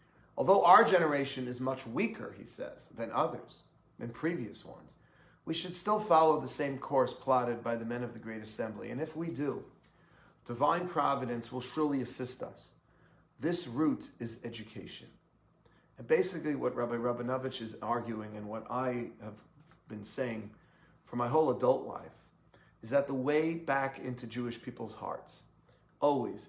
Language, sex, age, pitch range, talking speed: English, male, 40-59, 120-145 Hz, 160 wpm